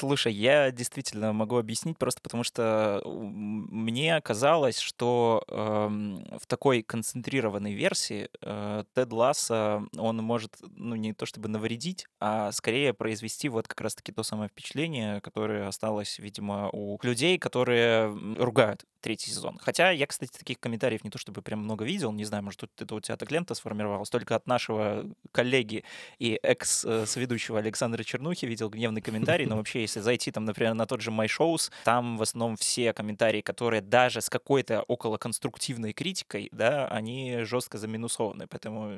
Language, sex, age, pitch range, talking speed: Russian, male, 20-39, 110-125 Hz, 160 wpm